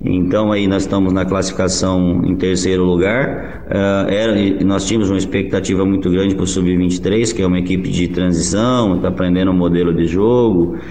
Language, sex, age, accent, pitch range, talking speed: Portuguese, male, 20-39, Brazilian, 90-100 Hz, 180 wpm